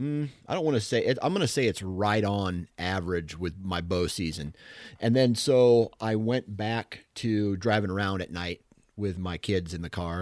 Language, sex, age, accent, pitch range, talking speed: English, male, 30-49, American, 95-115 Hz, 205 wpm